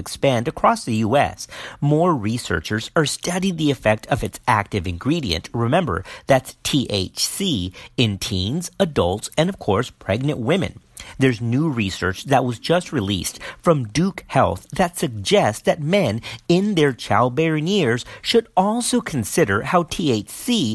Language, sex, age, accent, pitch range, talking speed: English, male, 50-69, American, 110-180 Hz, 140 wpm